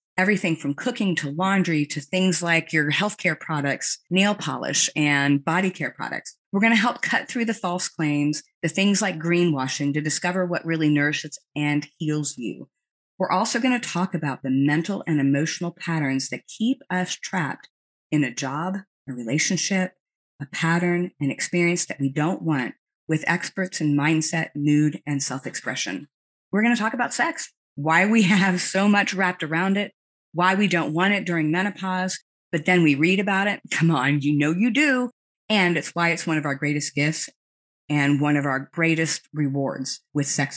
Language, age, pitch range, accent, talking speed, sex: English, 30-49, 150-185 Hz, American, 180 wpm, female